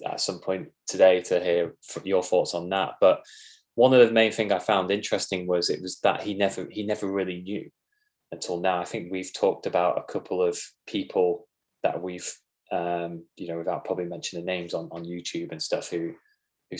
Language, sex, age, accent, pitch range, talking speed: English, male, 20-39, British, 85-105 Hz, 205 wpm